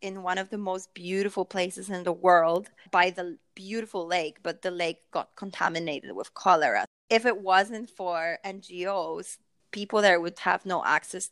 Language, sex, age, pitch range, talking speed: English, female, 20-39, 170-200 Hz, 170 wpm